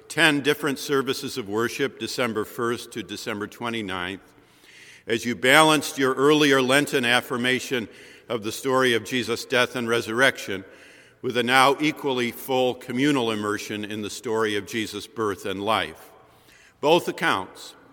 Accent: American